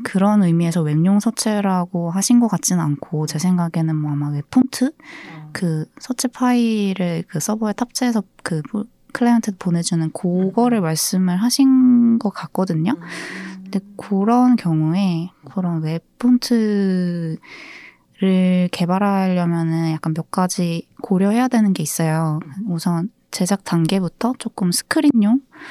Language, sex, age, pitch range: Korean, female, 20-39, 165-230 Hz